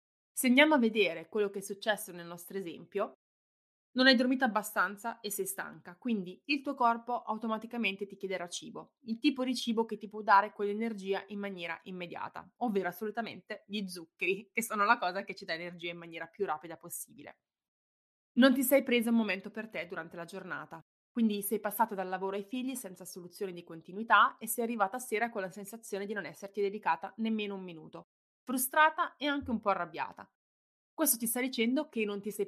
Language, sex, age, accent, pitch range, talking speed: Italian, female, 20-39, native, 190-235 Hz, 195 wpm